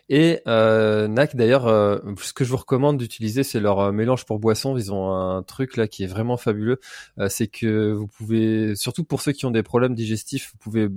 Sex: male